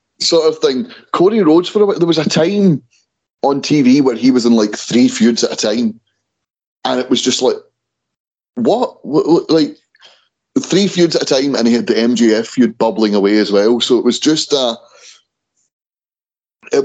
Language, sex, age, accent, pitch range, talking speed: English, male, 30-49, British, 110-160 Hz, 180 wpm